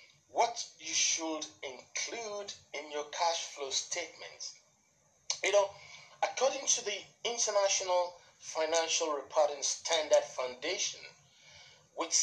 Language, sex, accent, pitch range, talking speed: English, male, Nigerian, 150-215 Hz, 100 wpm